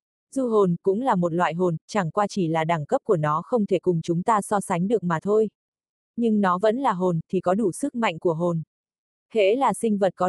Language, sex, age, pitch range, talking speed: Vietnamese, female, 20-39, 180-220 Hz, 245 wpm